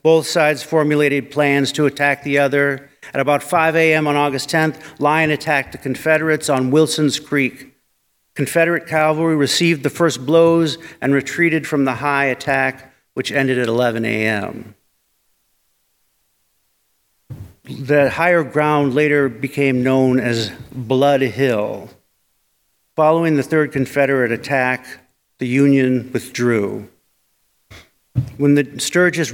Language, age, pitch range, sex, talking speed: English, 50-69, 125-150 Hz, male, 120 wpm